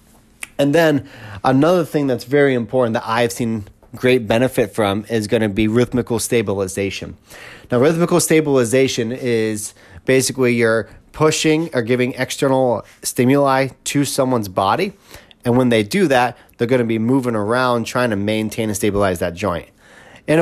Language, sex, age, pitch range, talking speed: English, male, 30-49, 110-130 Hz, 155 wpm